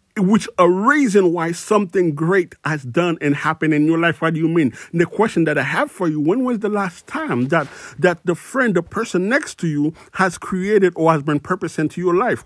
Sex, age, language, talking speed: male, 50-69, English, 230 wpm